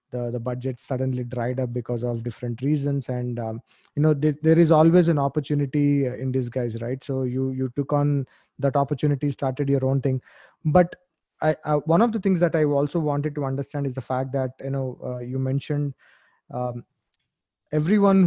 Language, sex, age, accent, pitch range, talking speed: English, male, 20-39, Indian, 130-150 Hz, 190 wpm